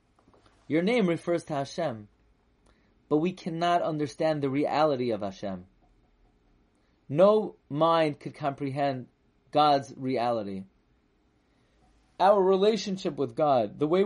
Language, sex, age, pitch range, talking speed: English, male, 30-49, 120-175 Hz, 105 wpm